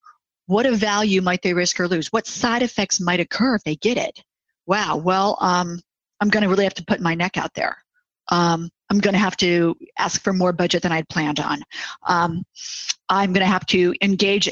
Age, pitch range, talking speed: 50-69, 175-225 Hz, 200 wpm